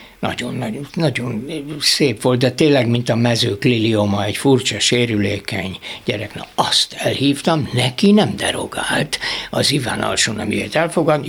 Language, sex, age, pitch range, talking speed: Hungarian, male, 60-79, 120-160 Hz, 130 wpm